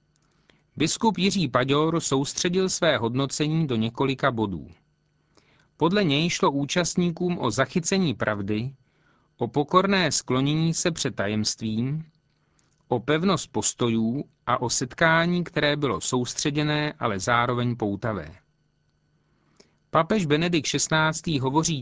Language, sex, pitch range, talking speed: Czech, male, 120-165 Hz, 105 wpm